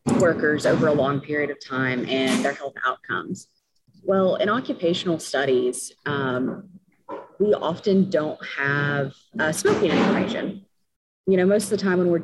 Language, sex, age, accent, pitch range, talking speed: English, female, 30-49, American, 145-195 Hz, 150 wpm